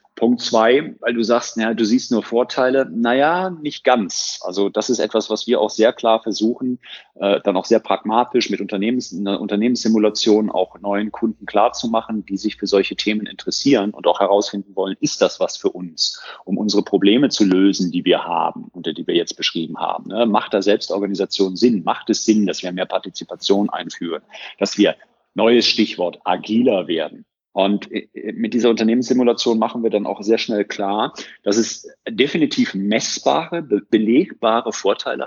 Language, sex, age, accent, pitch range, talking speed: German, male, 40-59, German, 100-125 Hz, 170 wpm